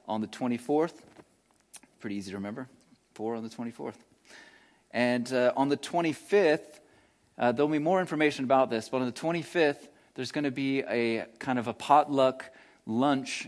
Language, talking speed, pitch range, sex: English, 165 wpm, 115-135 Hz, male